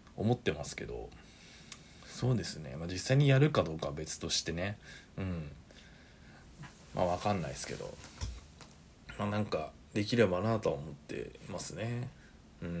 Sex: male